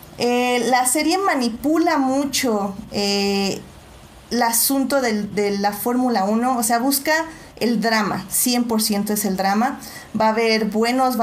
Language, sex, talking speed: Spanish, female, 140 wpm